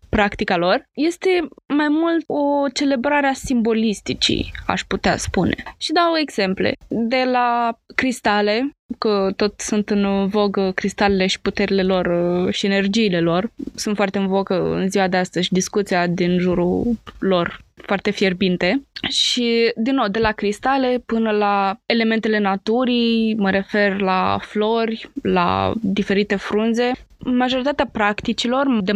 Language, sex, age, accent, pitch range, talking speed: Romanian, female, 20-39, native, 195-235 Hz, 135 wpm